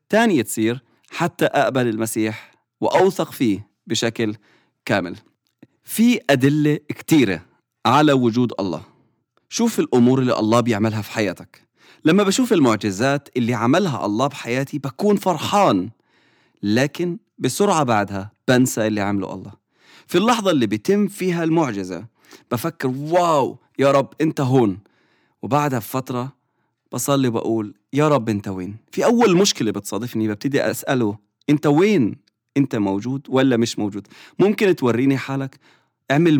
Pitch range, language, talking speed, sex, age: 110-150 Hz, English, 125 wpm, male, 30-49